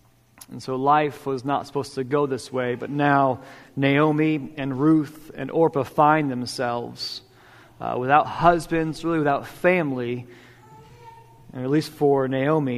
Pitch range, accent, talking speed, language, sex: 135-170 Hz, American, 140 wpm, English, male